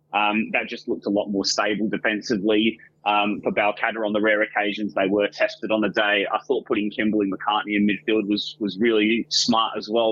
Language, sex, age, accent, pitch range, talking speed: English, male, 20-39, Australian, 100-125 Hz, 210 wpm